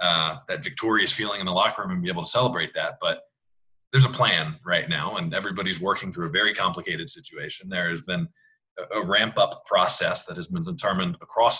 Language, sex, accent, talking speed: English, male, American, 205 wpm